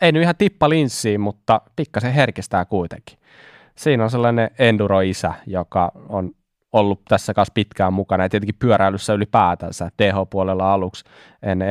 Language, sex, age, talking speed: Finnish, male, 20-39, 140 wpm